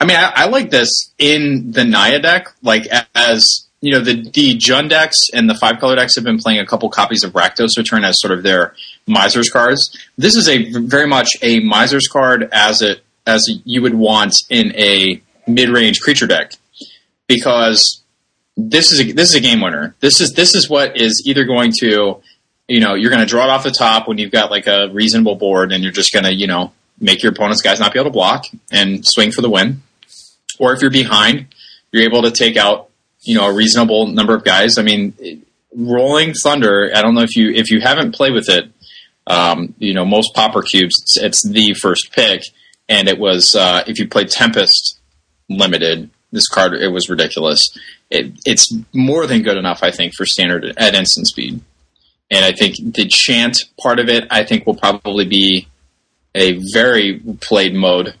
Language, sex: English, male